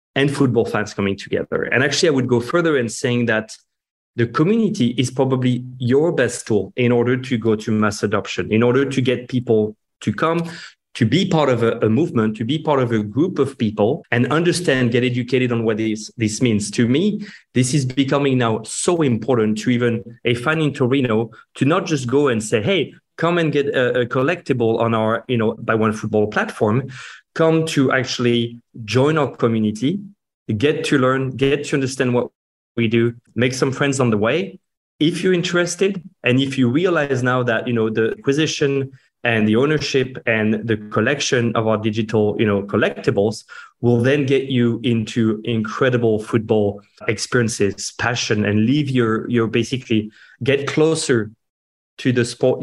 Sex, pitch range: male, 110-140 Hz